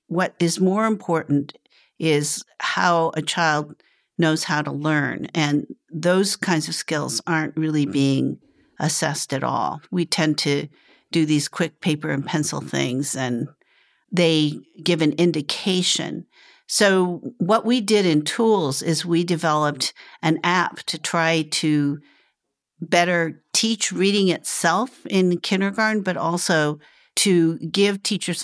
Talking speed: 135 wpm